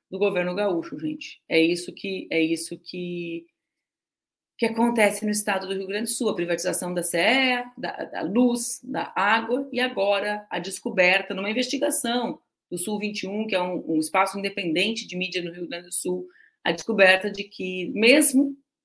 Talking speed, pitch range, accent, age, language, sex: 170 wpm, 180-245 Hz, Brazilian, 30-49, Portuguese, female